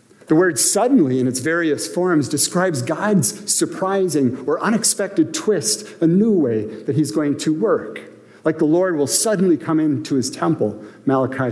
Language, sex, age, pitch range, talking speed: English, male, 50-69, 120-180 Hz, 160 wpm